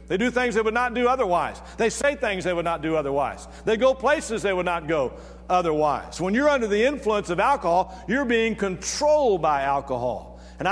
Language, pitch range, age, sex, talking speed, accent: English, 155-225 Hz, 50-69, male, 205 wpm, American